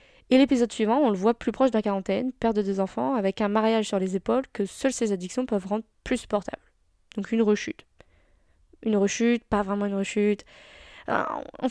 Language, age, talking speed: French, 20-39, 195 wpm